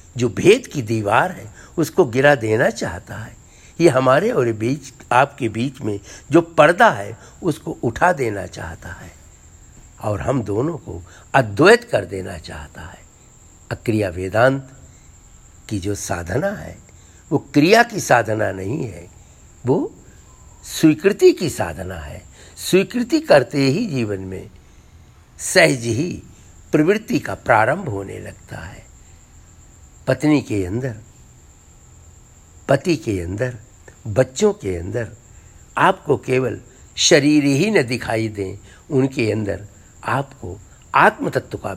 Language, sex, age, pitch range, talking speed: Hindi, male, 60-79, 90-130 Hz, 125 wpm